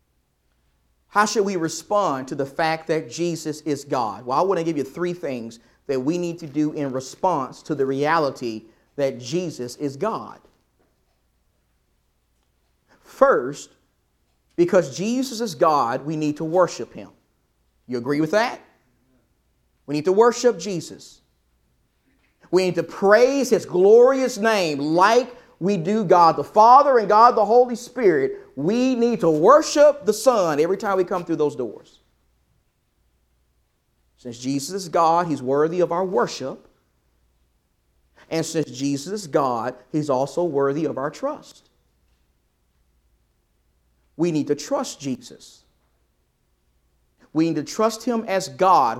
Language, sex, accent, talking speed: English, male, American, 140 wpm